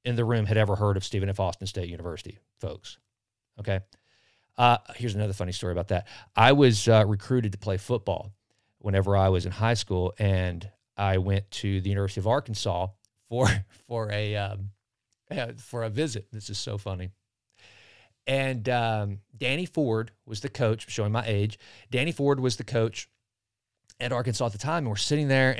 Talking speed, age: 180 wpm, 40-59